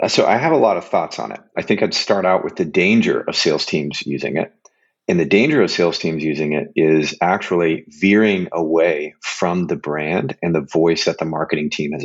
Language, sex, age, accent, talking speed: English, male, 30-49, American, 225 wpm